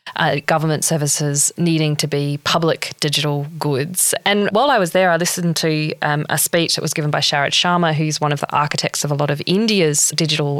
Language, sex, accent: English, female, Australian